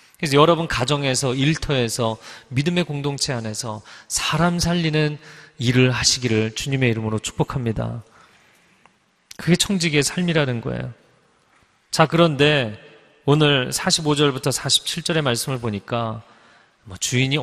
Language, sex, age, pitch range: Korean, male, 30-49, 115-155 Hz